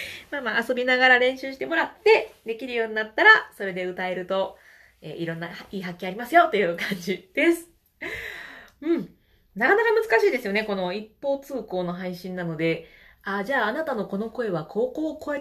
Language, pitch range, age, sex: Japanese, 185-275 Hz, 20-39, female